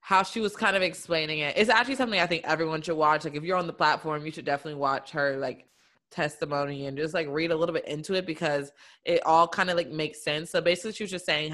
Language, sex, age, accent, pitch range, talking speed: English, female, 20-39, American, 150-175 Hz, 265 wpm